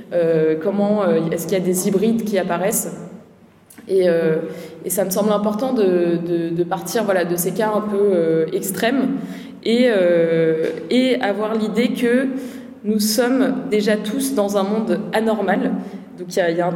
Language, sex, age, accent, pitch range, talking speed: French, female, 20-39, French, 180-225 Hz, 165 wpm